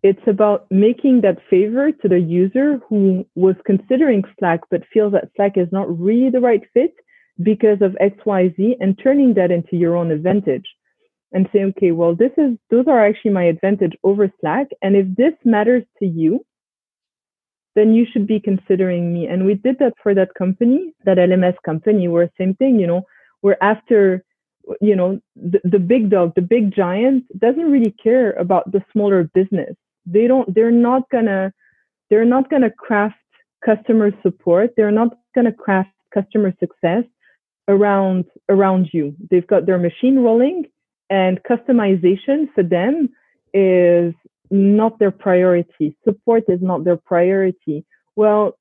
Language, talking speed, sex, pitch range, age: English, 160 wpm, female, 185-235 Hz, 20-39